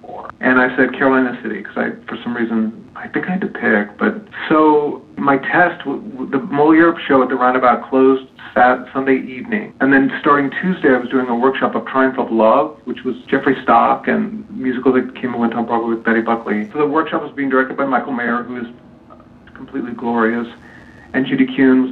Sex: male